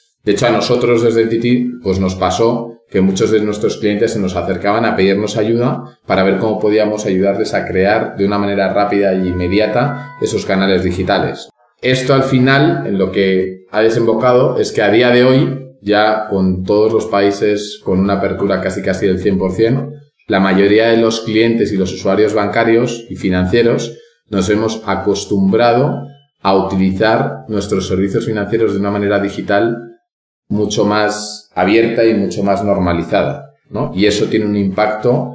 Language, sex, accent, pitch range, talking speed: Spanish, male, Spanish, 95-115 Hz, 165 wpm